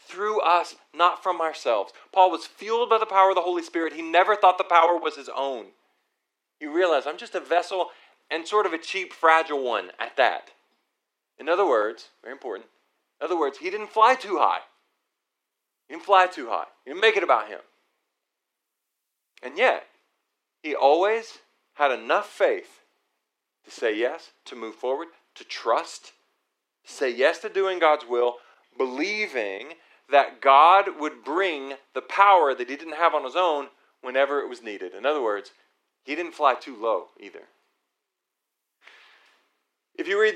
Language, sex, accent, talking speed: English, male, American, 170 wpm